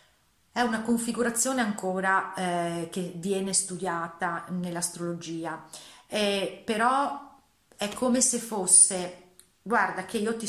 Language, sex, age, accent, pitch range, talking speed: Italian, female, 30-49, native, 175-215 Hz, 110 wpm